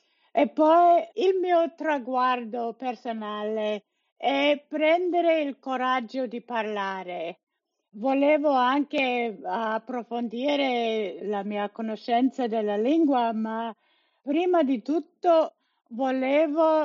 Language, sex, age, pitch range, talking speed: Italian, female, 50-69, 235-315 Hz, 90 wpm